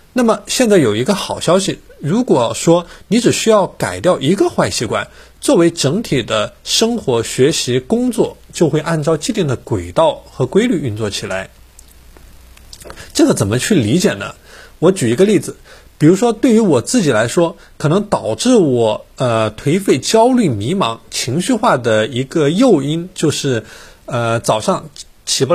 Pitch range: 115-195 Hz